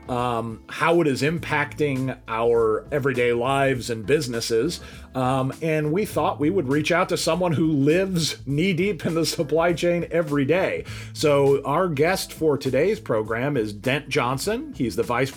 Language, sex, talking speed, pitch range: English, male, 160 wpm, 110-155 Hz